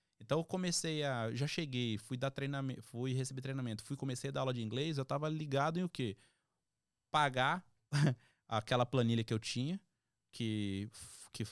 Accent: Brazilian